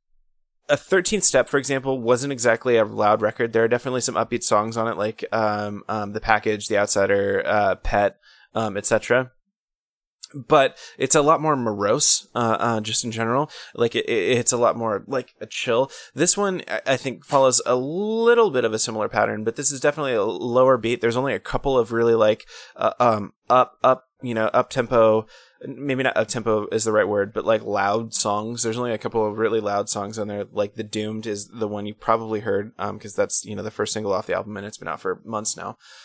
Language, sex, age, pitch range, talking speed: English, male, 20-39, 105-130 Hz, 220 wpm